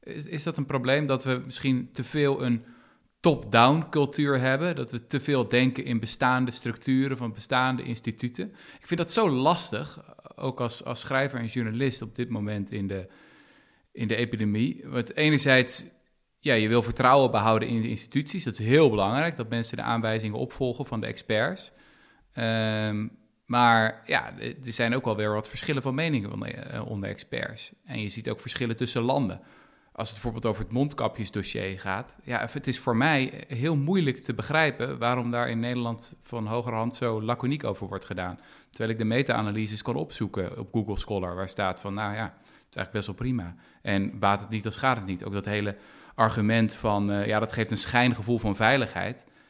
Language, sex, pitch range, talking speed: Dutch, male, 110-130 Hz, 180 wpm